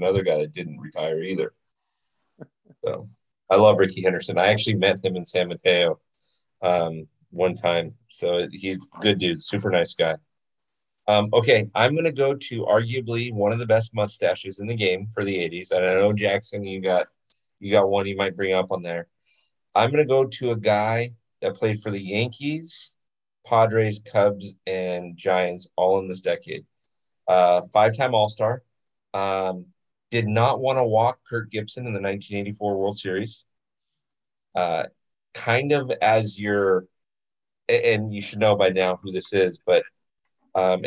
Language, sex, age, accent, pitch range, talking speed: English, male, 30-49, American, 95-120 Hz, 165 wpm